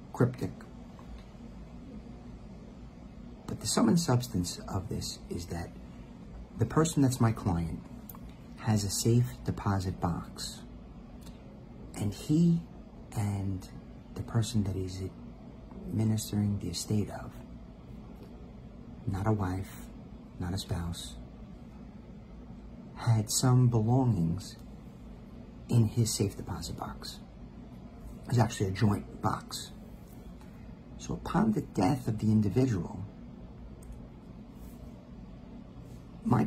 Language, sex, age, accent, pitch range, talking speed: English, male, 50-69, American, 85-120 Hz, 95 wpm